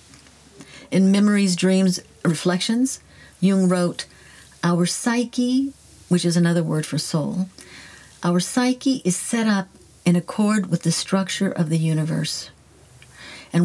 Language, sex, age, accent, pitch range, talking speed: English, female, 50-69, American, 170-195 Hz, 125 wpm